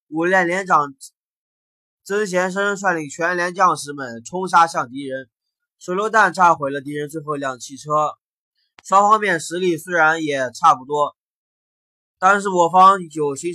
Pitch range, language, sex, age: 150-190 Hz, Chinese, male, 20-39